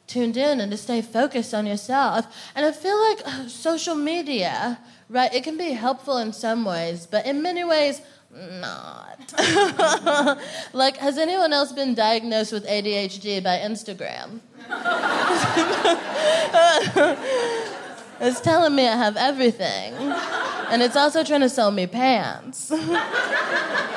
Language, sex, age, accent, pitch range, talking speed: English, female, 20-39, American, 190-265 Hz, 130 wpm